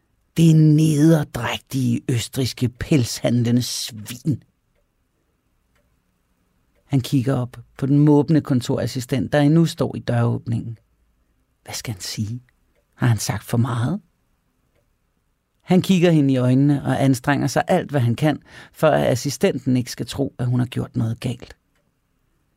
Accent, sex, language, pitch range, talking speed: native, male, Danish, 120-150 Hz, 135 wpm